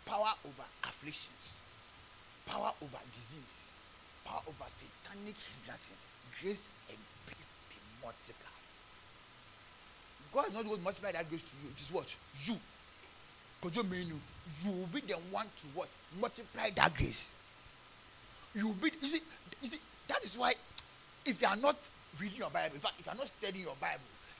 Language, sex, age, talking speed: English, male, 30-49, 160 wpm